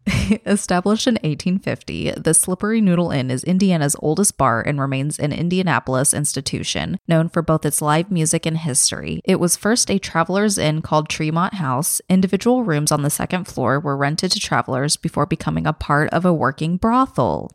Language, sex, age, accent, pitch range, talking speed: English, female, 20-39, American, 150-185 Hz, 175 wpm